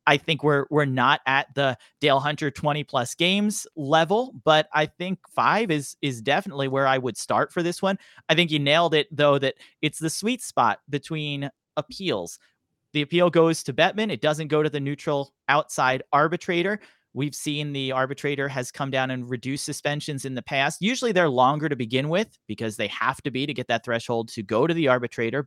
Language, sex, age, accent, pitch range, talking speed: English, male, 30-49, American, 130-160 Hz, 205 wpm